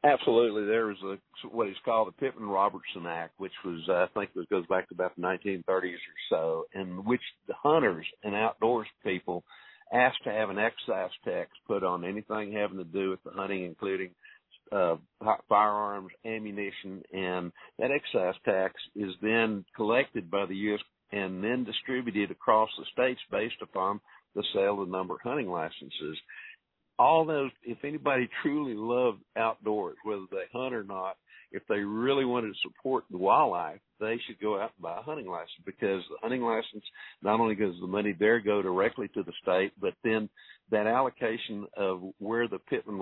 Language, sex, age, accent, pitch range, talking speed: English, male, 50-69, American, 95-115 Hz, 180 wpm